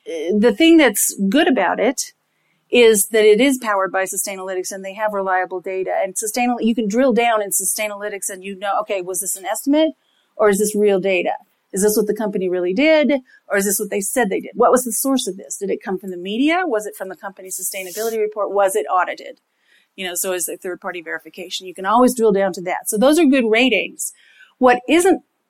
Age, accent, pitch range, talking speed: 40-59, American, 195-245 Hz, 230 wpm